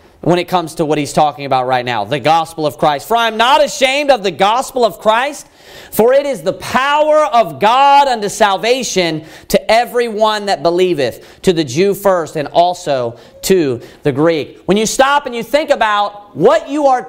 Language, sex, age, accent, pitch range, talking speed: English, male, 40-59, American, 185-270 Hz, 195 wpm